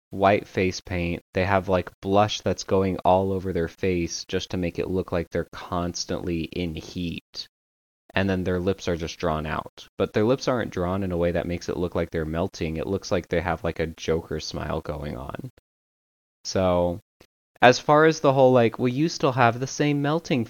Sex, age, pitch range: male, 20-39, 85-105 Hz